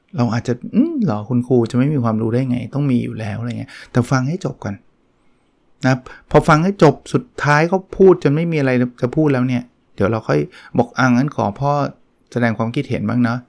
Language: Thai